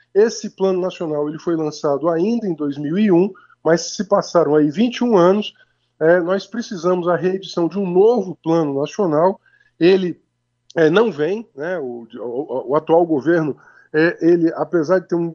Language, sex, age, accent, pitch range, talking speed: Portuguese, male, 20-39, Brazilian, 150-195 Hz, 160 wpm